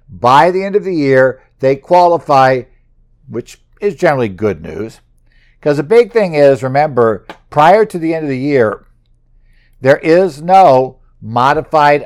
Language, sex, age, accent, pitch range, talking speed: English, male, 60-79, American, 115-145 Hz, 150 wpm